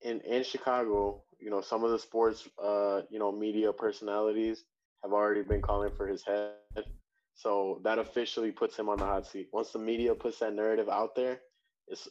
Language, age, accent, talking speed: English, 20-39, American, 195 wpm